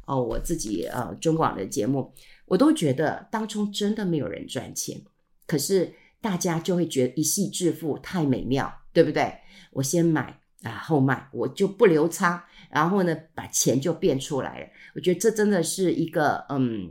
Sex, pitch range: female, 145-190 Hz